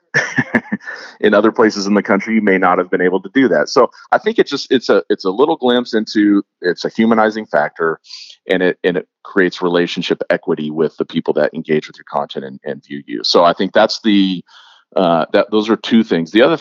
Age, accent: 40-59, American